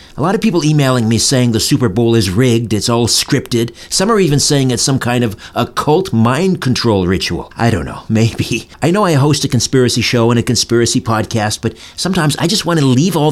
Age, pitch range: 50-69, 115-160 Hz